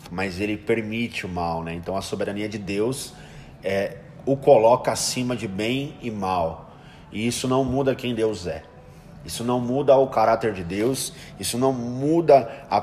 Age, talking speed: 20-39, 175 wpm